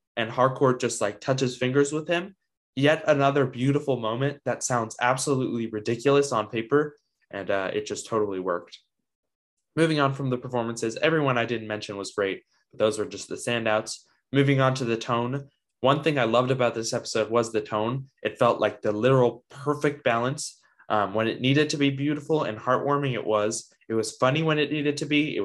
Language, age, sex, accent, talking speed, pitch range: English, 20-39, male, American, 195 wpm, 110-140 Hz